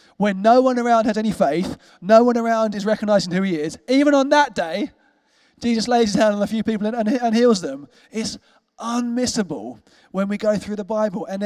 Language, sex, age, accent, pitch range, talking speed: English, male, 20-39, British, 165-225 Hz, 215 wpm